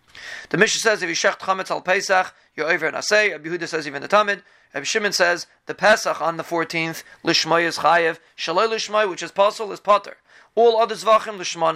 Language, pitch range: English, 165-200 Hz